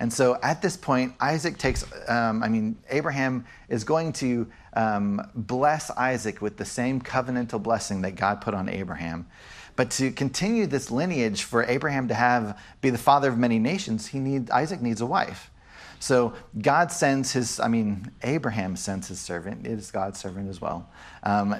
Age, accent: 40-59, American